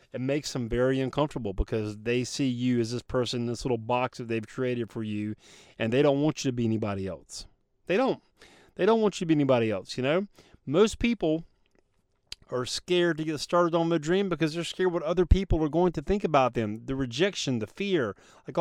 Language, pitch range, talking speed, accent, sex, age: English, 125-175 Hz, 220 wpm, American, male, 30-49